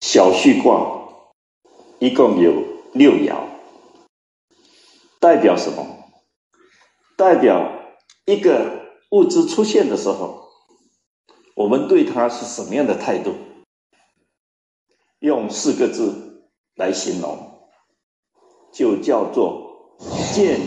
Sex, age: male, 60-79